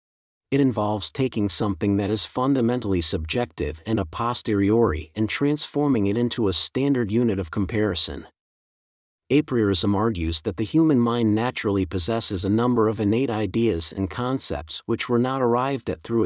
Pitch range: 95-125 Hz